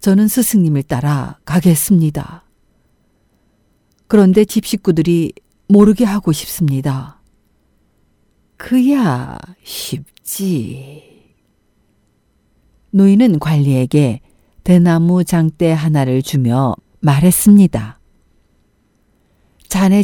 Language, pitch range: Korean, 125-195 Hz